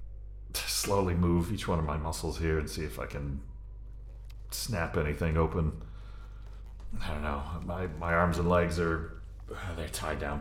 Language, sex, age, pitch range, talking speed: English, male, 40-59, 85-100 Hz, 160 wpm